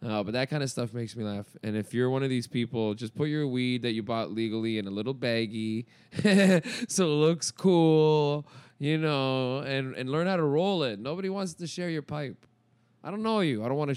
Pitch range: 115-150 Hz